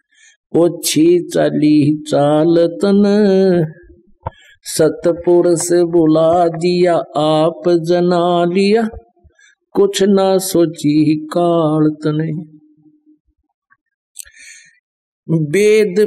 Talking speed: 55 wpm